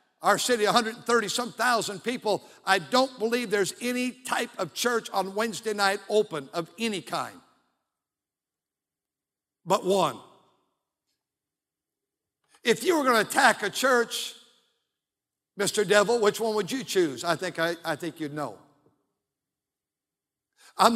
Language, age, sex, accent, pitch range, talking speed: English, 60-79, male, American, 185-230 Hz, 130 wpm